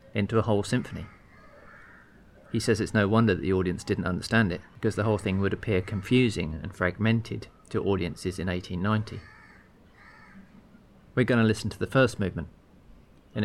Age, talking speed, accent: 40-59, 165 wpm, British